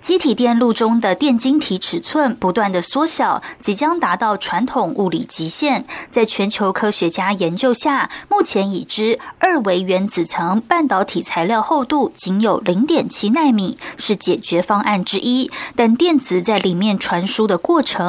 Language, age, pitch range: German, 20-39, 195-265 Hz